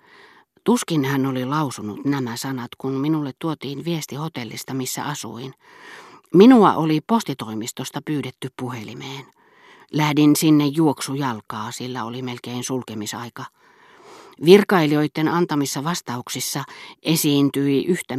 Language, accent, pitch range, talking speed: Finnish, native, 130-175 Hz, 100 wpm